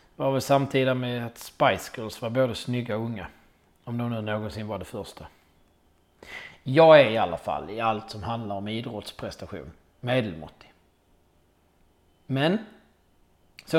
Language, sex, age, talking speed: Swedish, male, 30-49, 145 wpm